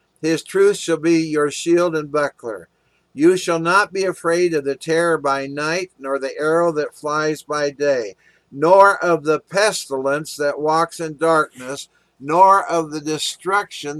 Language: English